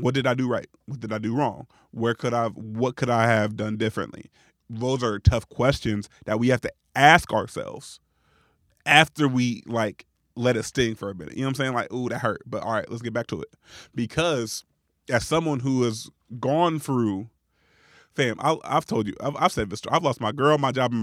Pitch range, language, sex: 105-130 Hz, English, male